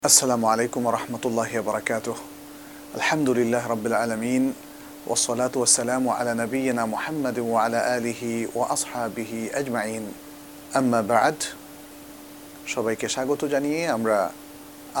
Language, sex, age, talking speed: Bengali, male, 40-59, 65 wpm